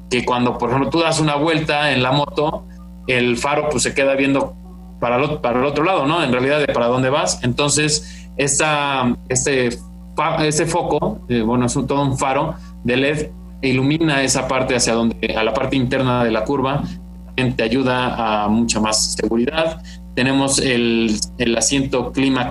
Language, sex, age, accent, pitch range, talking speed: Spanish, male, 20-39, Mexican, 115-140 Hz, 180 wpm